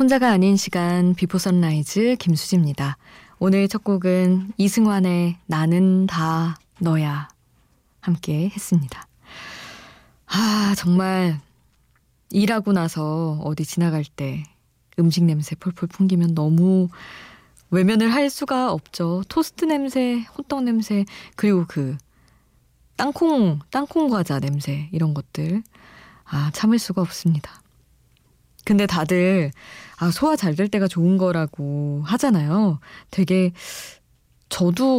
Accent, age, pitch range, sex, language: native, 20-39, 160-210 Hz, female, Korean